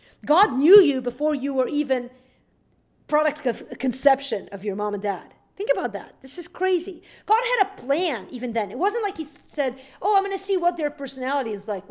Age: 50-69